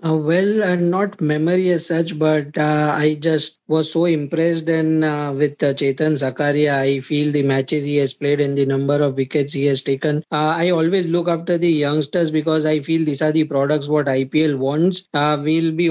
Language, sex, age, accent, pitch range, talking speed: English, male, 20-39, Indian, 150-165 Hz, 210 wpm